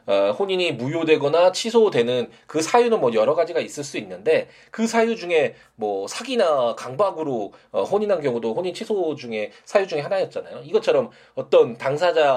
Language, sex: Korean, male